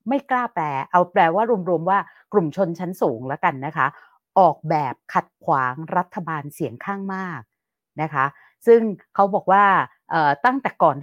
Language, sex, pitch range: Thai, female, 155-215 Hz